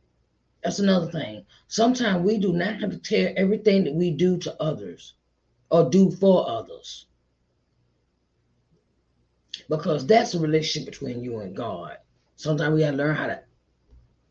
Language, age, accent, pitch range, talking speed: English, 30-49, American, 110-170 Hz, 145 wpm